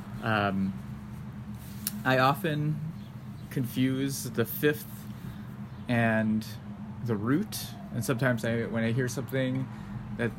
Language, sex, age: English, male, 20-39